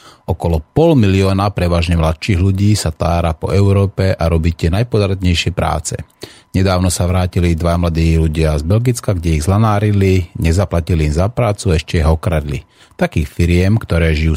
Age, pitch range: 30-49, 85-105 Hz